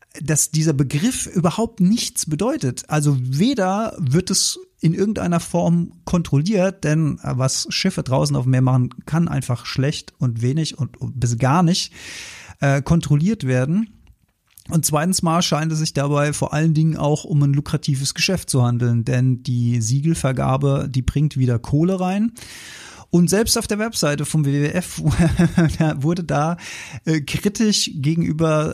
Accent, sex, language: German, male, German